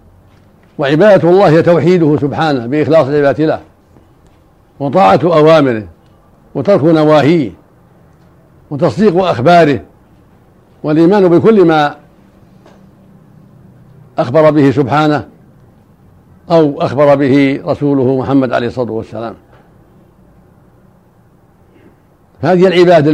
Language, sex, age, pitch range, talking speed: Arabic, male, 60-79, 130-155 Hz, 75 wpm